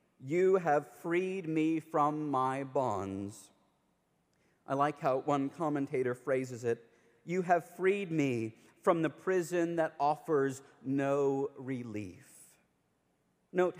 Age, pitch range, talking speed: 40-59, 145-185 Hz, 115 wpm